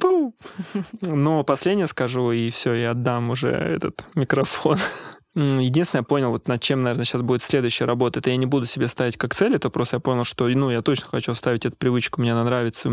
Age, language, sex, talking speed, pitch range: 20-39, Russian, male, 210 wpm, 120-135 Hz